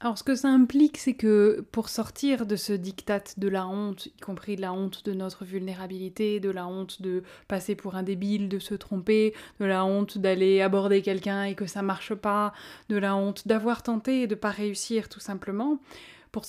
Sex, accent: female, French